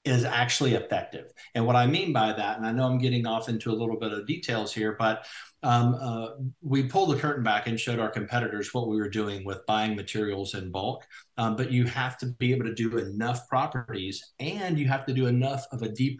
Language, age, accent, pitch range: English, 50-69, American, 105-125 Hz